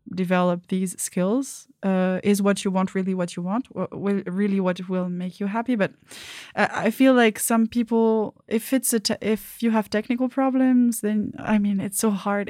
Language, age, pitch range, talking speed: English, 20-39, 190-220 Hz, 190 wpm